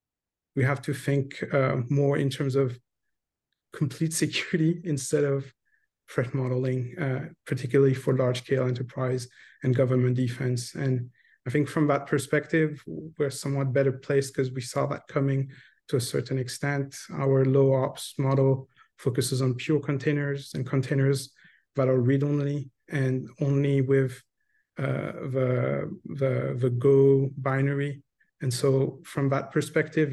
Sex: male